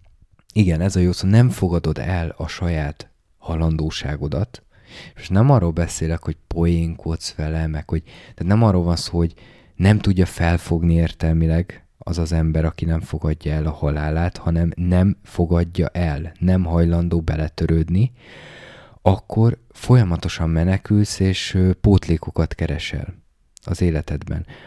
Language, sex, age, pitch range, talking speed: Hungarian, male, 20-39, 80-100 Hz, 130 wpm